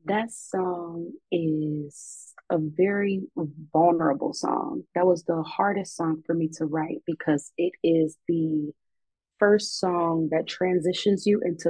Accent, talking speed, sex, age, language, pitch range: American, 135 wpm, female, 30-49, English, 155-180 Hz